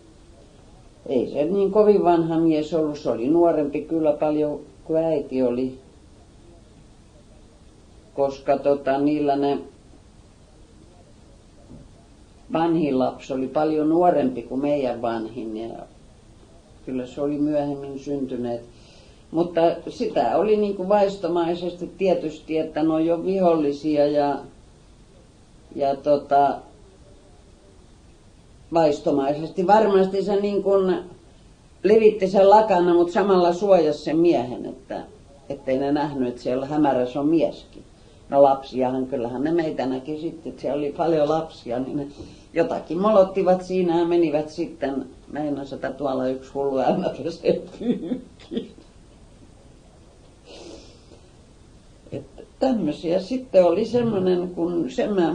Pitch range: 130-175 Hz